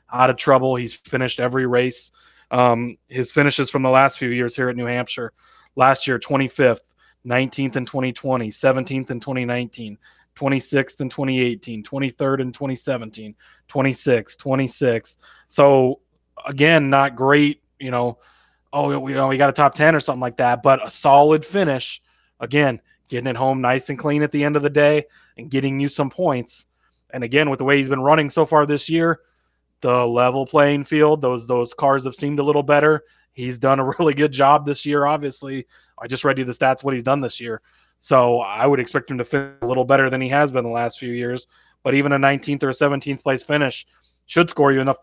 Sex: male